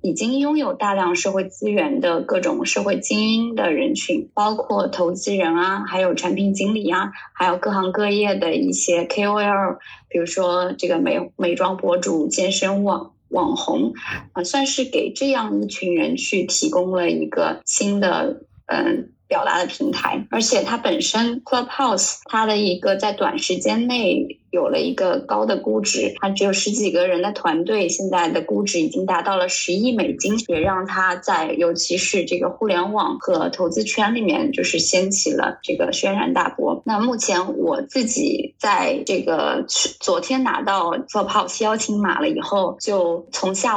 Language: Chinese